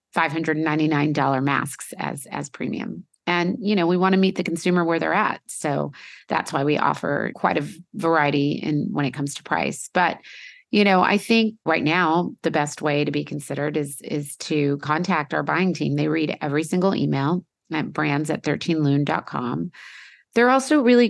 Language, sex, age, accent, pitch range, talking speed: English, female, 30-49, American, 150-180 Hz, 175 wpm